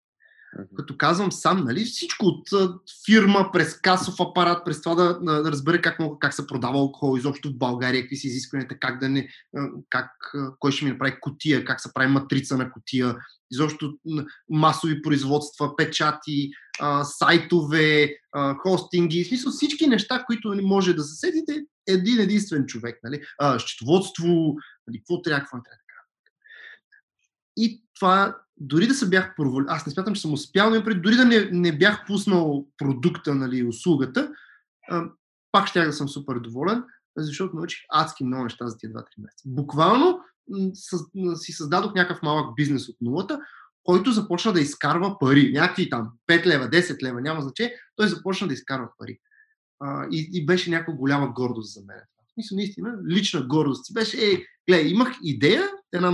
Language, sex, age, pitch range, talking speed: Bulgarian, male, 20-39, 140-195 Hz, 155 wpm